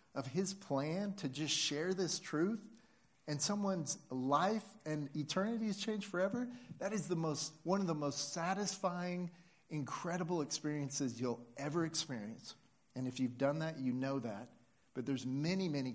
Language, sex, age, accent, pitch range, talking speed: English, male, 40-59, American, 125-165 Hz, 160 wpm